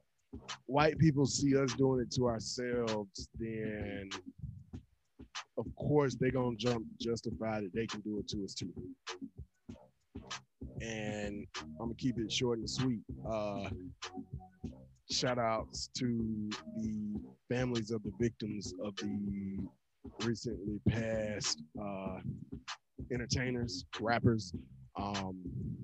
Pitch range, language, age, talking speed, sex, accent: 105-130 Hz, English, 20-39, 110 wpm, male, American